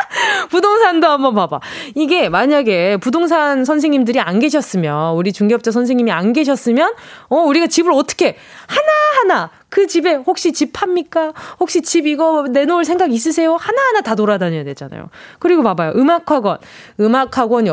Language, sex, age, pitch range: Korean, female, 20-39, 220-340 Hz